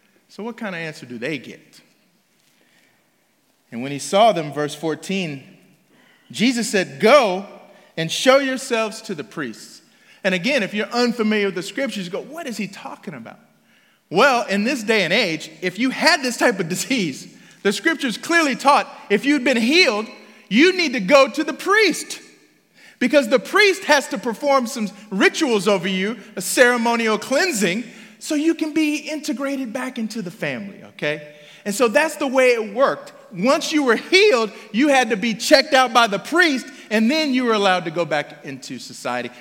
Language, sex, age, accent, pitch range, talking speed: English, male, 30-49, American, 195-290 Hz, 185 wpm